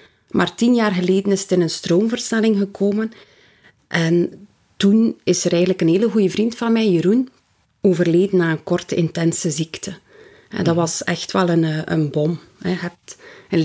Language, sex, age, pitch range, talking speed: Dutch, female, 30-49, 165-200 Hz, 170 wpm